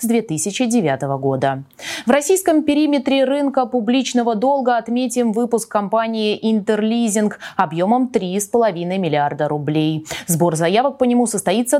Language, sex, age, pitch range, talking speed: Russian, female, 20-39, 170-250 Hz, 105 wpm